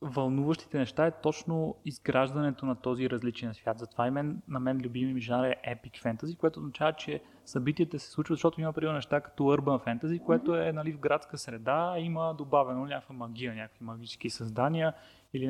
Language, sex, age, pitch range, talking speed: Bulgarian, male, 20-39, 125-145 Hz, 185 wpm